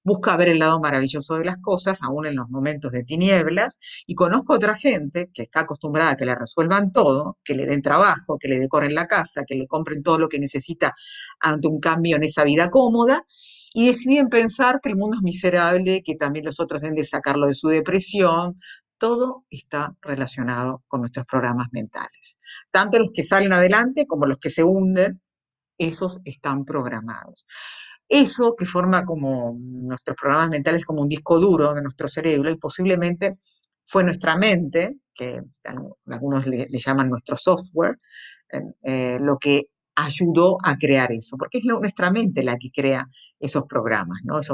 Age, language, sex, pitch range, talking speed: 50-69, Spanish, female, 140-190 Hz, 180 wpm